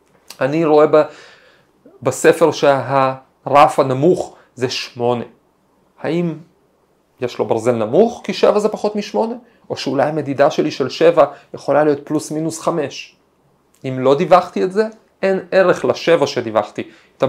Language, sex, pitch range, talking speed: Hebrew, male, 145-205 Hz, 130 wpm